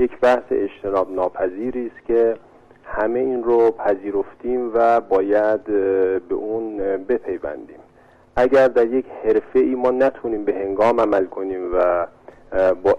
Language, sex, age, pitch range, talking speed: Persian, male, 40-59, 100-125 Hz, 130 wpm